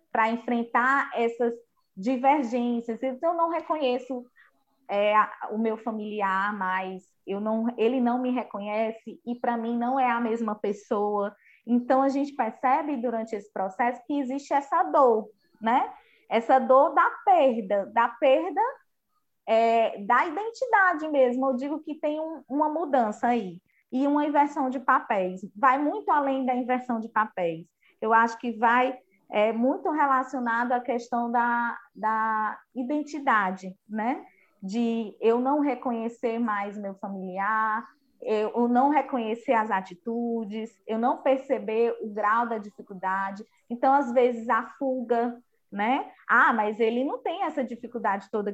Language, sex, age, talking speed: Portuguese, female, 20-39, 140 wpm